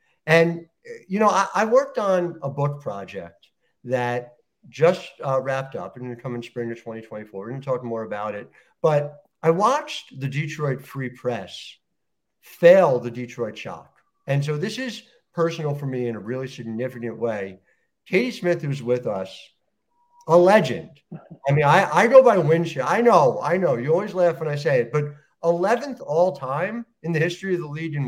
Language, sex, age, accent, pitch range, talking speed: English, male, 50-69, American, 140-185 Hz, 190 wpm